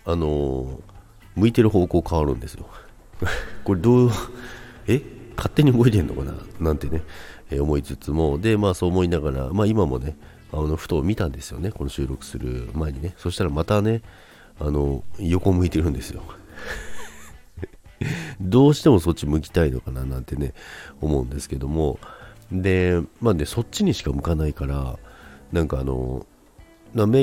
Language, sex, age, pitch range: Japanese, male, 40-59, 70-100 Hz